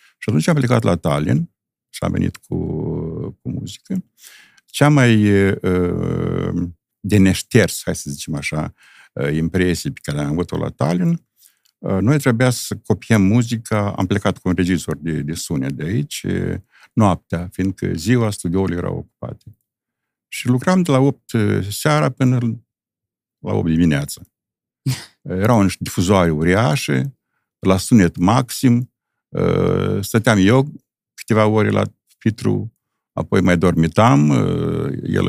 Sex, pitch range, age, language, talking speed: male, 85-120 Hz, 50-69, Romanian, 130 wpm